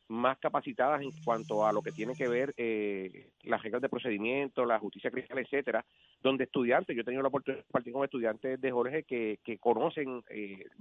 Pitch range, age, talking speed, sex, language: 115-140 Hz, 40-59, 200 wpm, male, Spanish